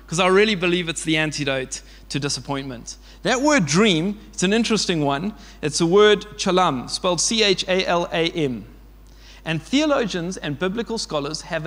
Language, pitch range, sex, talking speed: English, 155-220 Hz, male, 145 wpm